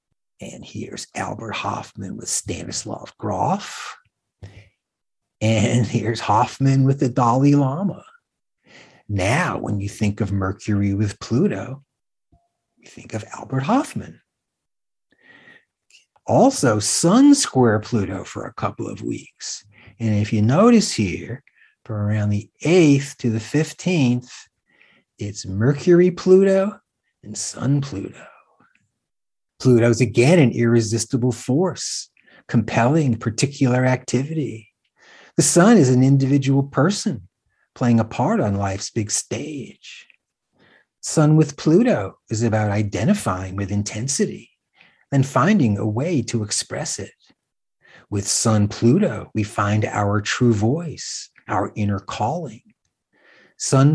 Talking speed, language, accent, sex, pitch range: 115 wpm, English, American, male, 105-140 Hz